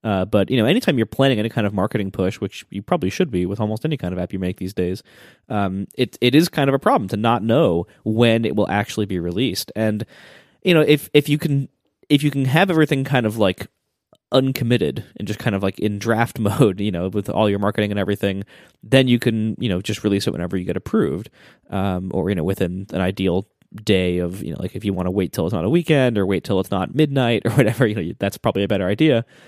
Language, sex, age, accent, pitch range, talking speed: English, male, 20-39, American, 100-130 Hz, 255 wpm